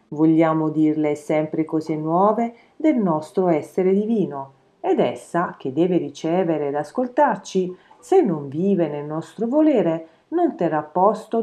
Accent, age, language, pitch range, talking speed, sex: native, 40-59, Italian, 150-210 Hz, 130 wpm, female